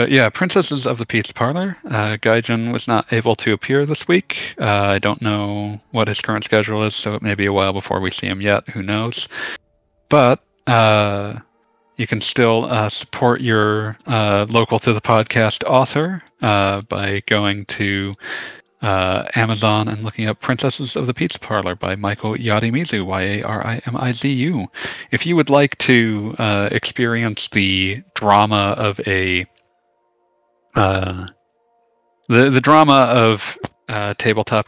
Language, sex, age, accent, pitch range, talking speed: English, male, 40-59, American, 100-115 Hz, 150 wpm